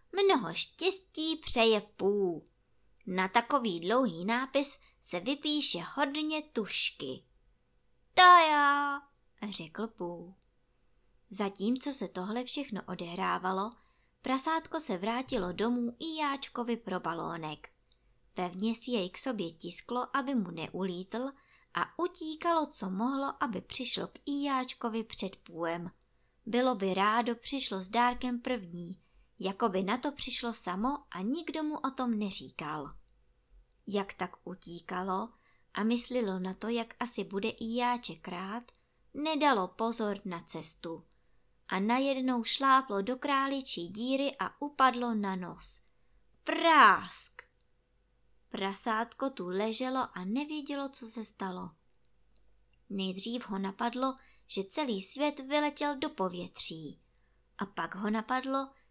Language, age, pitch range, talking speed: Czech, 20-39, 190-270 Hz, 115 wpm